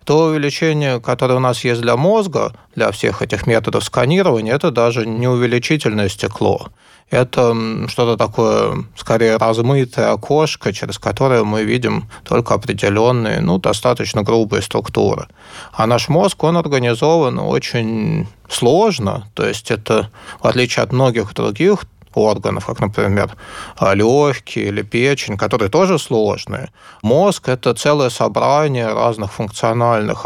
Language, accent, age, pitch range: Russian, native, 20-39, 110-140 Hz